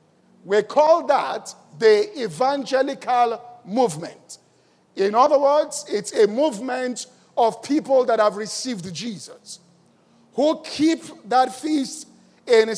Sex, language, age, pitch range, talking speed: male, English, 50-69, 230-295 Hz, 110 wpm